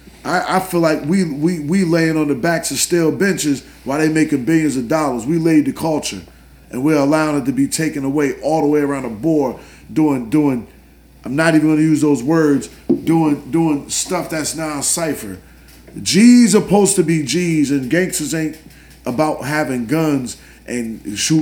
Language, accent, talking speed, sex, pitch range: English, American, 190 wpm, male, 140-165 Hz